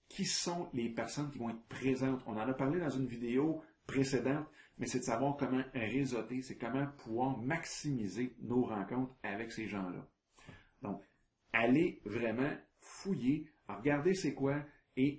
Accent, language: Canadian, French